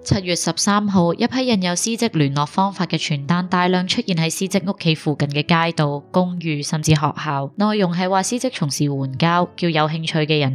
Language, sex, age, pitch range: Chinese, female, 20-39, 145-180 Hz